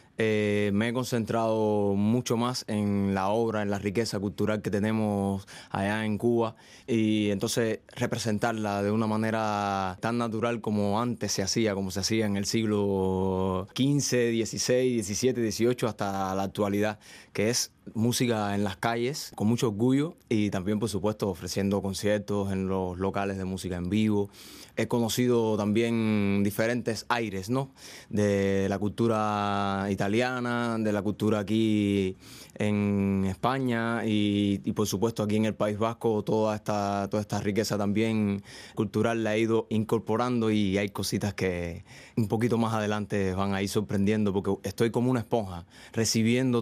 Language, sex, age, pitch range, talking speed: Spanish, male, 20-39, 100-115 Hz, 155 wpm